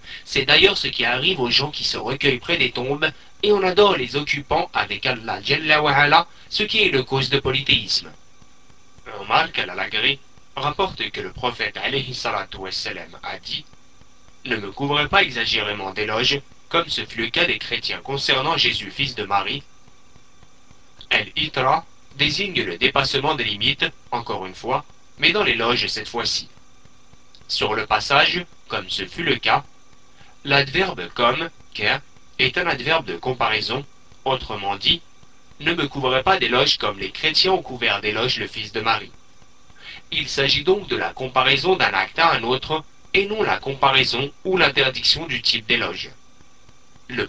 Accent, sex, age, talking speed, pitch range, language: French, male, 40-59, 155 wpm, 120-155 Hz, French